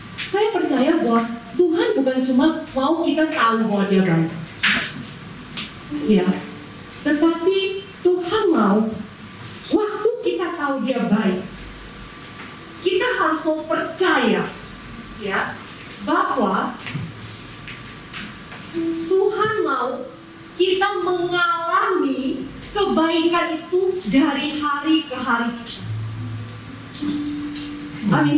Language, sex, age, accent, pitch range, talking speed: Indonesian, female, 30-49, native, 250-360 Hz, 80 wpm